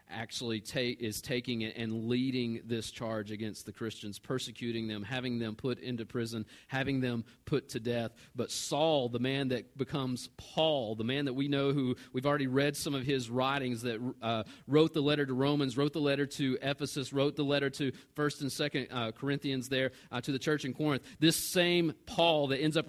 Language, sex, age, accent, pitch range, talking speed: English, male, 40-59, American, 115-160 Hz, 200 wpm